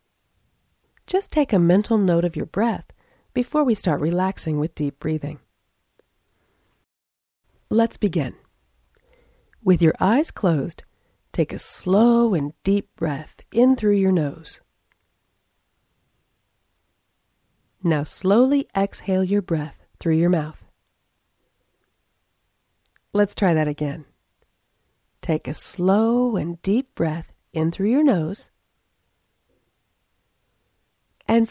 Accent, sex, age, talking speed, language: American, female, 40-59, 105 wpm, English